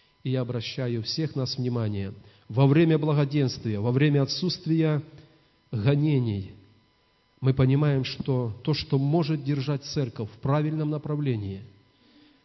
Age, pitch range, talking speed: 40-59, 115-150 Hz, 115 wpm